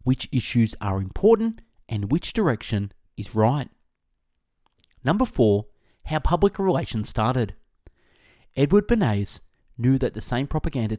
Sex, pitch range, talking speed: male, 105-145 Hz, 120 wpm